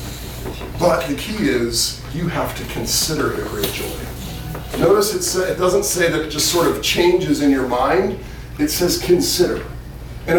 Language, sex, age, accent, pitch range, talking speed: English, male, 40-59, American, 130-185 Hz, 160 wpm